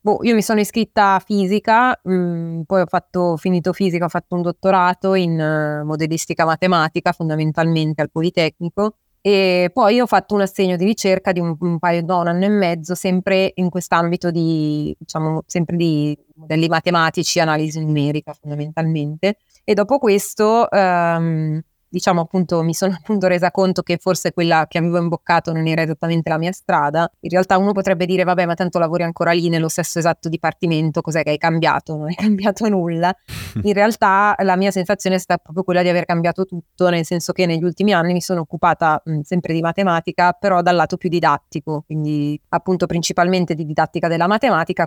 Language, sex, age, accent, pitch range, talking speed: Italian, female, 30-49, native, 165-190 Hz, 185 wpm